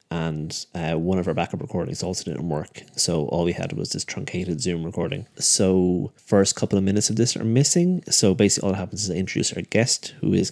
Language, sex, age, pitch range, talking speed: English, male, 30-49, 90-105 Hz, 230 wpm